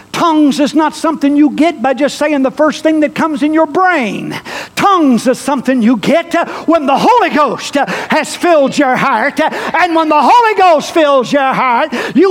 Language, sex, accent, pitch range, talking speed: English, male, American, 250-315 Hz, 190 wpm